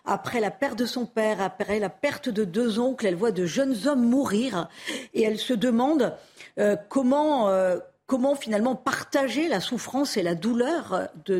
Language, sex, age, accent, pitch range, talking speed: French, female, 50-69, French, 195-260 Hz, 175 wpm